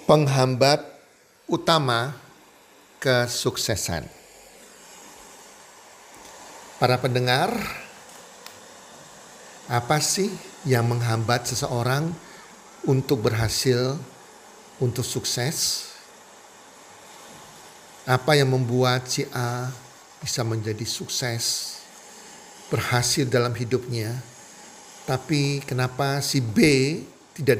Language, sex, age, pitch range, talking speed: Indonesian, male, 50-69, 120-140 Hz, 65 wpm